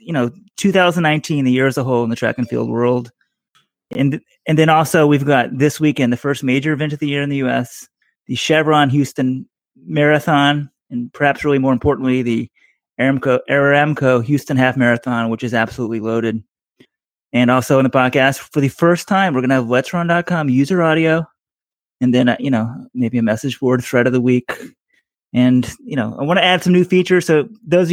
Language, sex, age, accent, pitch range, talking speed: English, male, 30-49, American, 125-160 Hz, 200 wpm